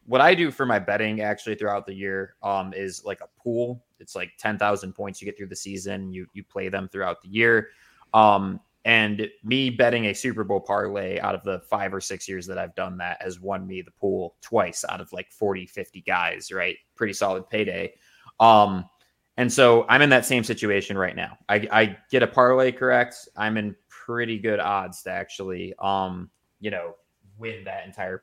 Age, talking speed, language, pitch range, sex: 20-39, 200 wpm, English, 95-120 Hz, male